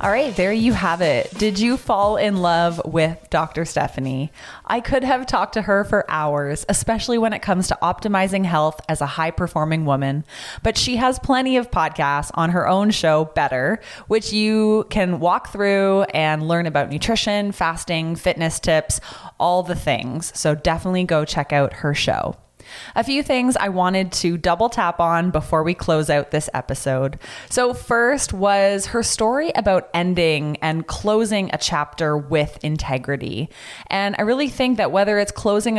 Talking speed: 175 wpm